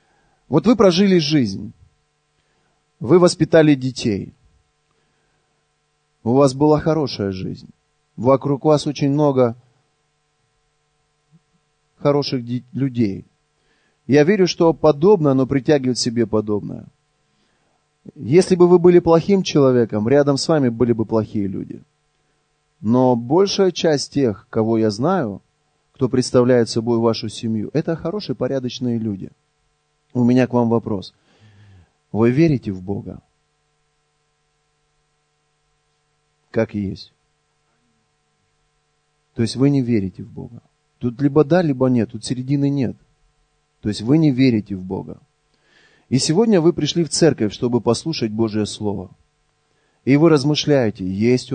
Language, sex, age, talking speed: Russian, male, 30-49, 120 wpm